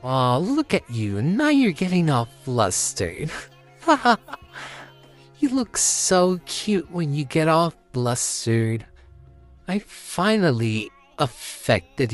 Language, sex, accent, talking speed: English, male, American, 110 wpm